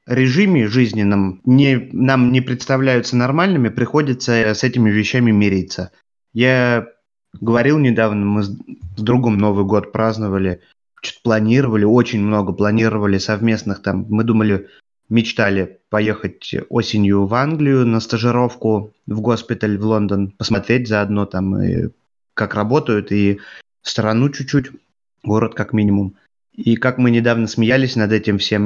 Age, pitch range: 20-39, 105-120 Hz